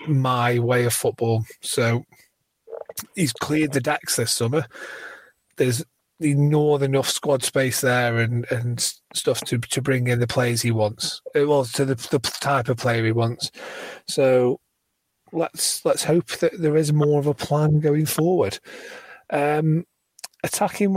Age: 30-49